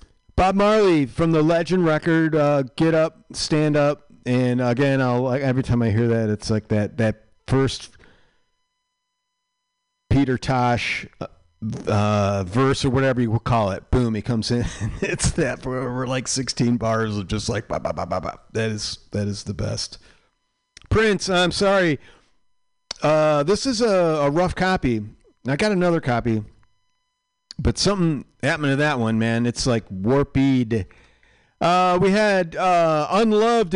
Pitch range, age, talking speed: 110-170 Hz, 40-59, 155 wpm